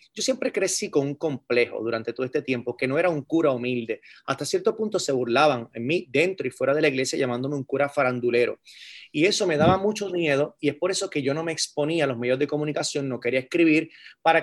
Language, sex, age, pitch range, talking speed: Spanish, male, 30-49, 140-175 Hz, 235 wpm